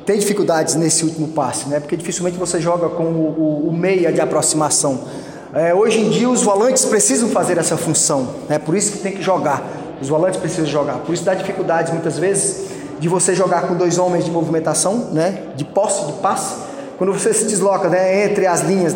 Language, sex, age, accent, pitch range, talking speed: Portuguese, male, 20-39, Brazilian, 170-215 Hz, 210 wpm